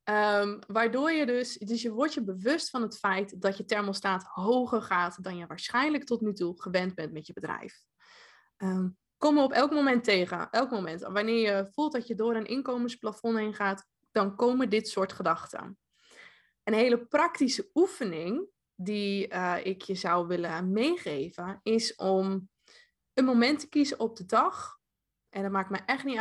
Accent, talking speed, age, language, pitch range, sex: Dutch, 170 wpm, 20-39, Dutch, 190-255 Hz, female